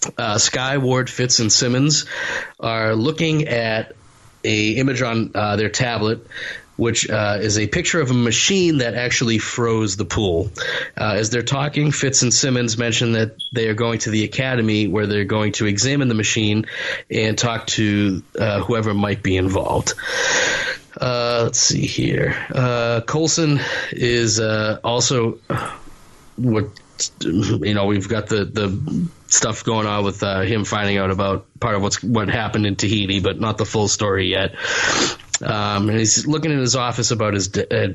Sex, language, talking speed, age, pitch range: male, English, 170 wpm, 30-49, 105-125 Hz